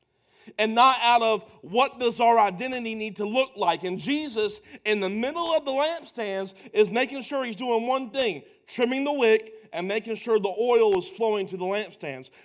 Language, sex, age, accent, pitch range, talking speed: English, male, 40-59, American, 195-245 Hz, 195 wpm